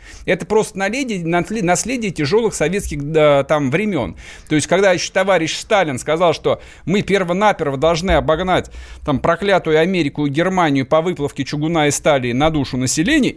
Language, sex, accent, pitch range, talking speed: Russian, male, native, 135-175 Hz, 155 wpm